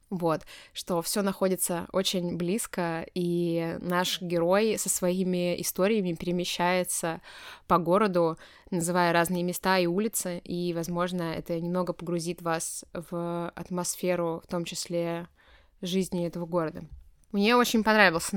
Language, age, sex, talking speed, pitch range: Russian, 20-39, female, 120 wpm, 175-190 Hz